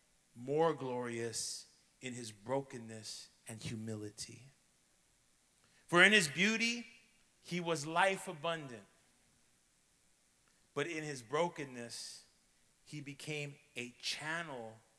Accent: American